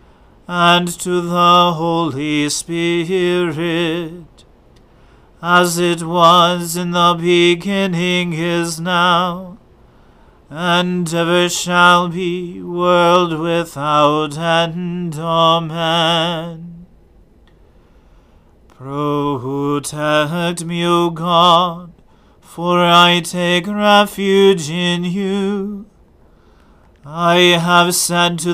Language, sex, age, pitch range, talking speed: English, male, 40-59, 170-180 Hz, 75 wpm